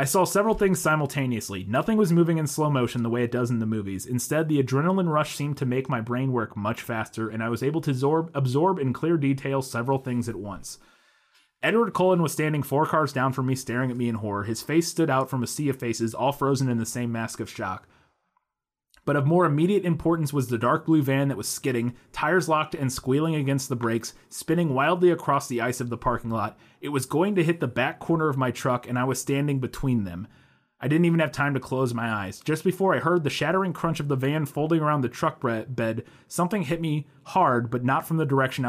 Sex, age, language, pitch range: male, 30-49, English, 120-160 Hz